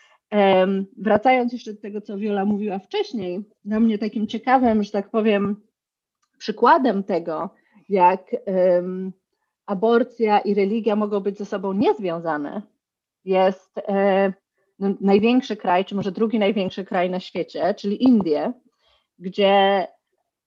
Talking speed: 125 wpm